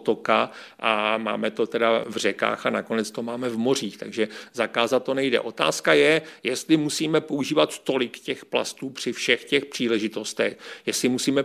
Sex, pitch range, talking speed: male, 120-140 Hz, 155 wpm